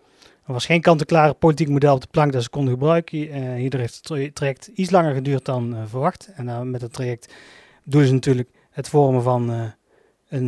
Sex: male